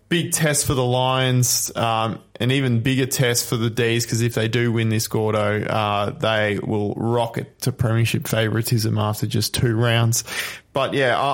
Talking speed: 175 wpm